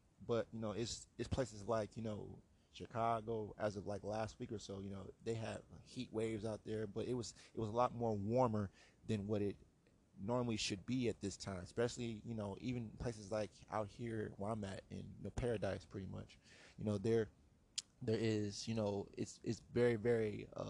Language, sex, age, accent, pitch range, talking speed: English, male, 20-39, American, 105-115 Hz, 210 wpm